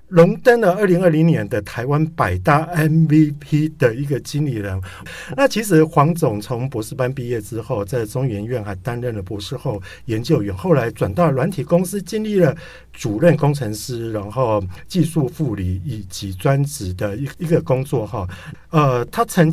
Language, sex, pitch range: Chinese, male, 115-165 Hz